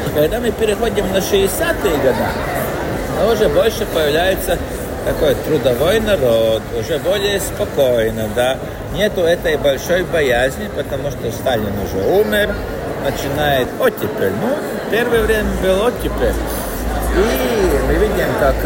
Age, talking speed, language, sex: 50-69, 120 wpm, Russian, male